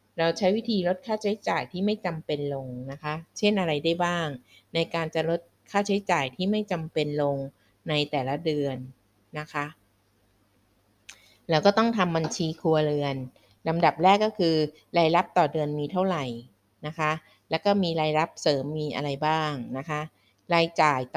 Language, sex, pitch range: Thai, female, 140-175 Hz